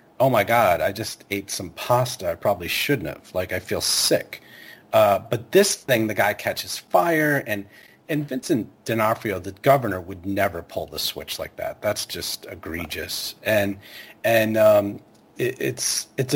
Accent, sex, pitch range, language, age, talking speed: American, male, 105-140 Hz, English, 40-59, 165 wpm